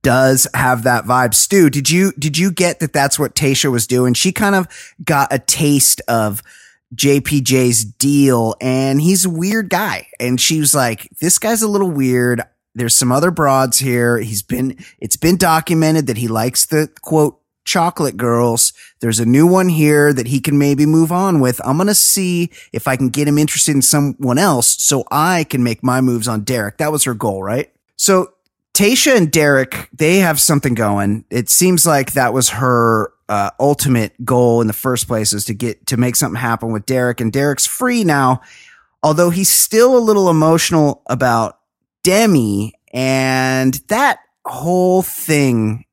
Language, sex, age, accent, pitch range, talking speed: English, male, 20-39, American, 120-165 Hz, 185 wpm